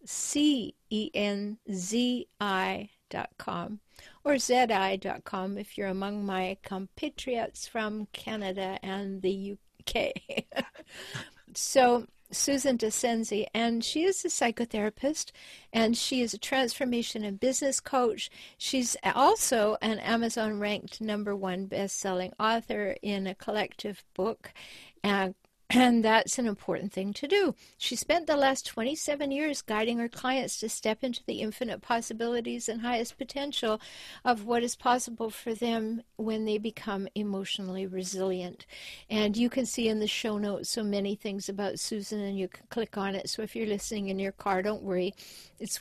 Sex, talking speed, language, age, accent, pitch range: female, 145 wpm, English, 60-79, American, 200-245 Hz